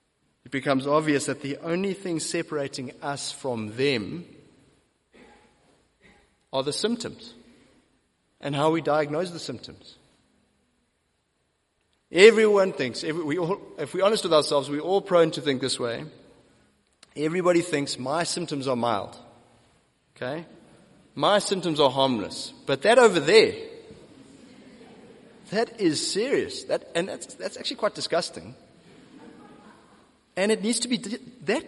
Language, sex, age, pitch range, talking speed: English, male, 30-49, 145-225 Hz, 125 wpm